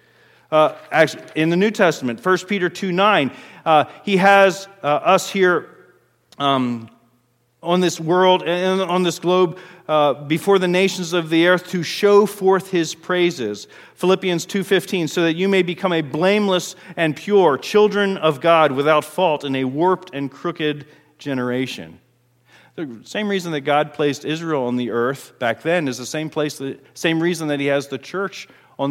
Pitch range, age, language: 130-180 Hz, 40-59, English